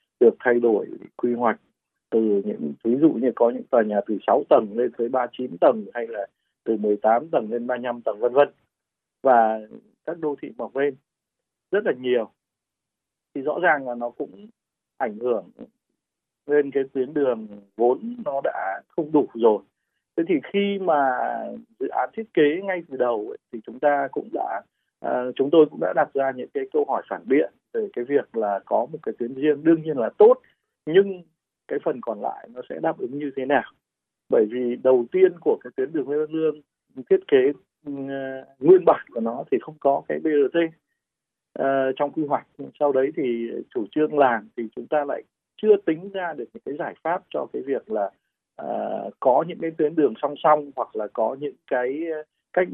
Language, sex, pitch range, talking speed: Vietnamese, male, 120-175 Hz, 195 wpm